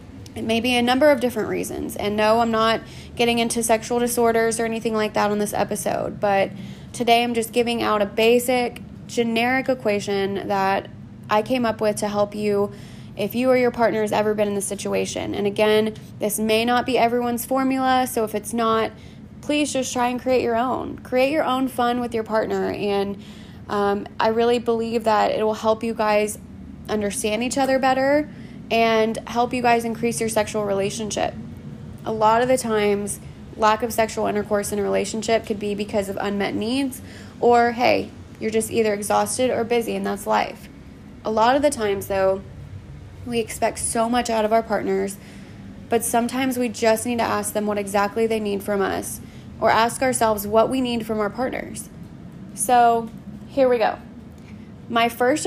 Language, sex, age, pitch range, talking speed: English, female, 20-39, 205-240 Hz, 185 wpm